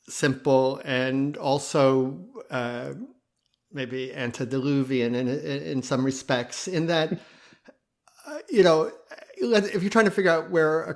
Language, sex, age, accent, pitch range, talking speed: English, male, 50-69, American, 130-155 Hz, 125 wpm